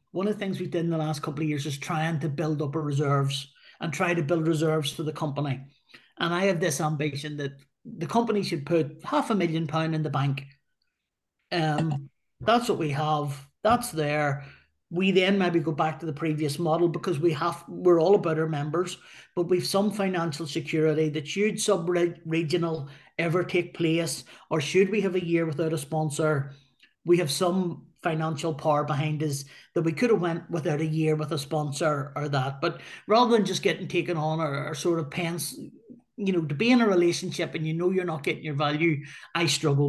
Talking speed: 210 wpm